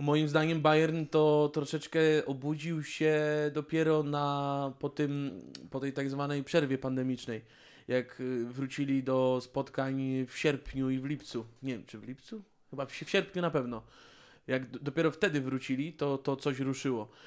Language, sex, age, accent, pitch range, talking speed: Polish, male, 20-39, native, 135-155 Hz, 155 wpm